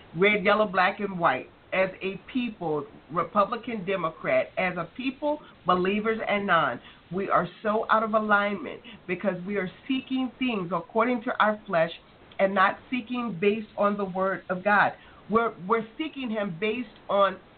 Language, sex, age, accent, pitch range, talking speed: English, female, 40-59, American, 200-265 Hz, 155 wpm